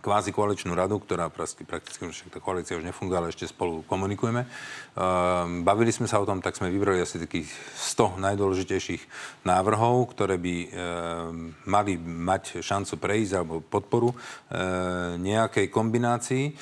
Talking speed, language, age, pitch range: 135 wpm, Slovak, 40-59, 90-105 Hz